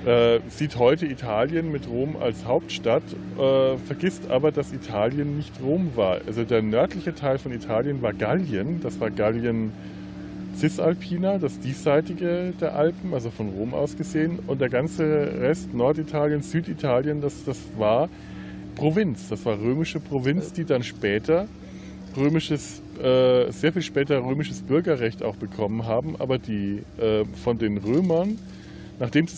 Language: German